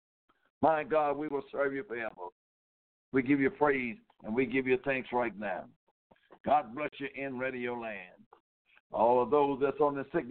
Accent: American